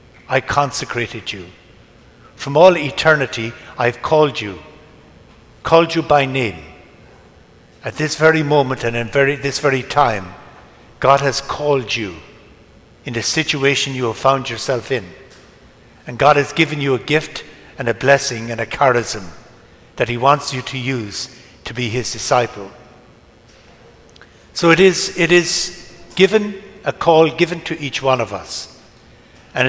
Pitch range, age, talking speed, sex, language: 120-160 Hz, 60-79, 150 wpm, male, English